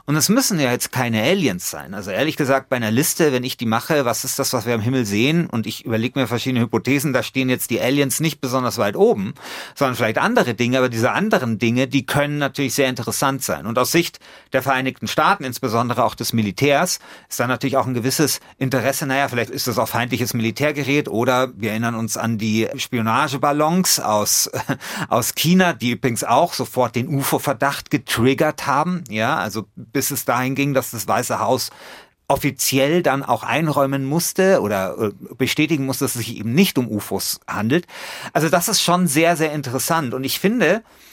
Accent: German